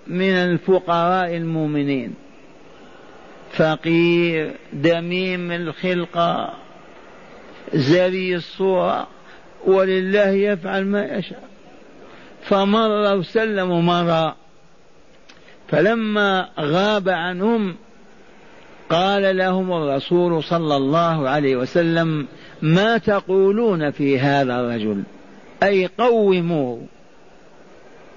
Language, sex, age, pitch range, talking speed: Arabic, male, 50-69, 160-210 Hz, 70 wpm